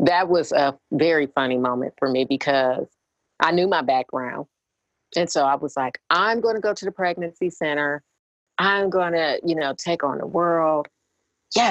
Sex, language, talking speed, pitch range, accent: female, English, 185 wpm, 135-180 Hz, American